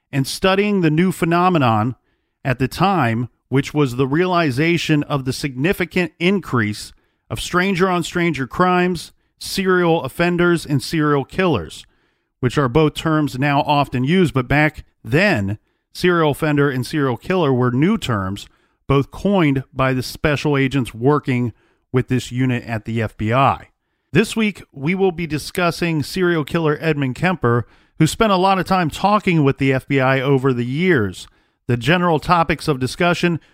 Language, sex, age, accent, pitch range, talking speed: English, male, 40-59, American, 130-170 Hz, 150 wpm